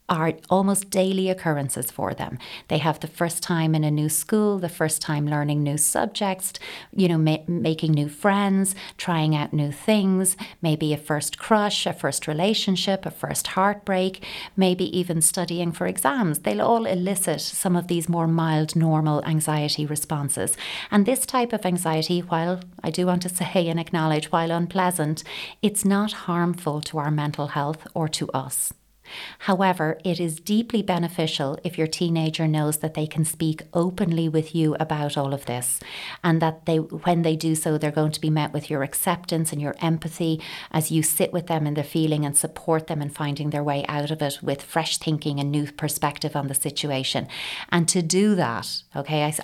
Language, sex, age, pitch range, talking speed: English, female, 30-49, 150-180 Hz, 185 wpm